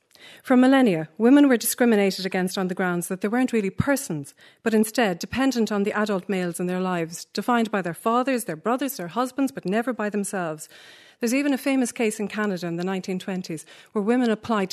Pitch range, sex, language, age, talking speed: 175-230 Hz, female, English, 40-59, 200 wpm